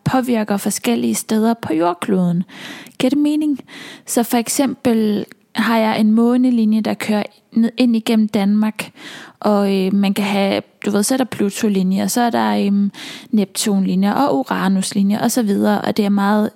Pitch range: 205-240 Hz